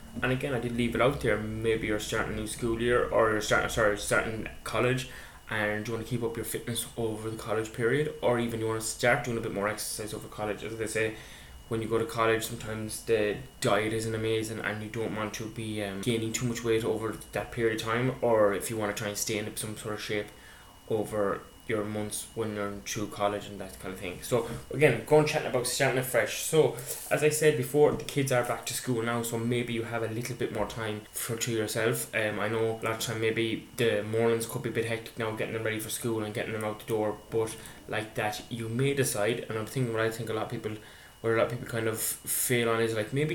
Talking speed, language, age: 255 wpm, English, 10-29